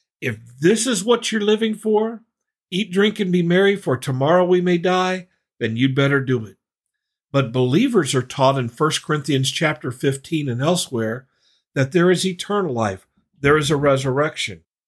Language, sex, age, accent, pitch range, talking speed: English, male, 50-69, American, 125-175 Hz, 170 wpm